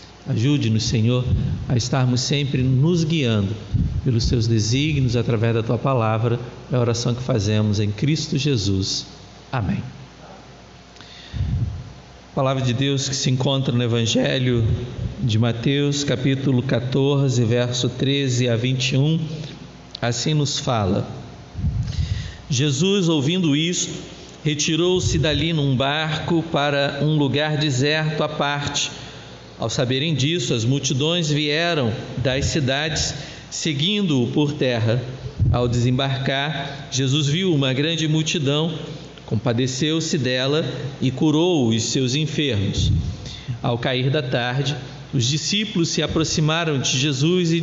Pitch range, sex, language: 120-150 Hz, male, Portuguese